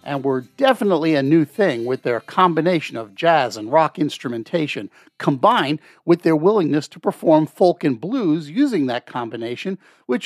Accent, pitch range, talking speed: American, 140-200 Hz, 160 wpm